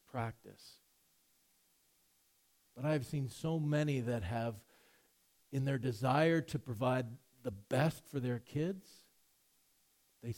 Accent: American